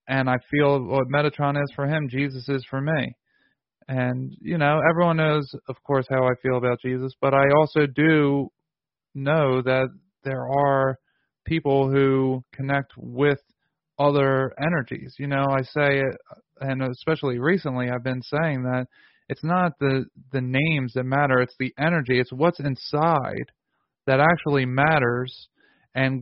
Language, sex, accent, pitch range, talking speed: English, male, American, 130-150 Hz, 150 wpm